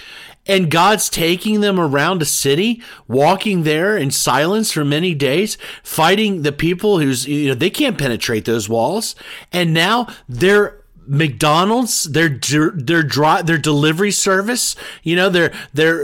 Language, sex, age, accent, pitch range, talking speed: English, male, 40-59, American, 140-185 Hz, 140 wpm